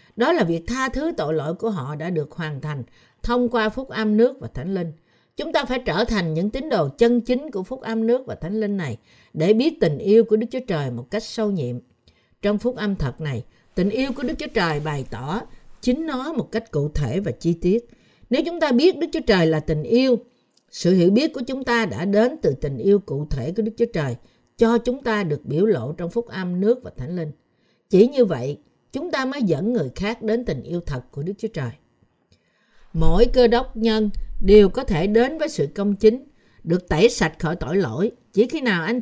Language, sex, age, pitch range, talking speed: Vietnamese, female, 60-79, 155-235 Hz, 235 wpm